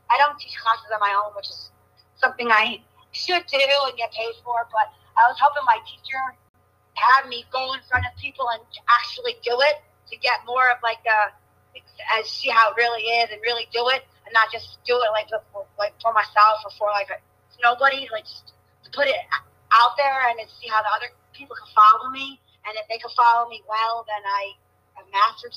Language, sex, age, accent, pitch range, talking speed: English, female, 30-49, American, 215-270 Hz, 220 wpm